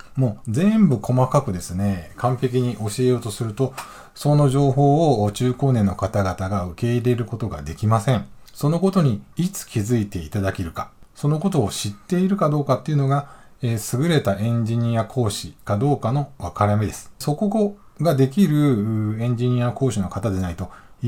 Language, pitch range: Japanese, 105-145 Hz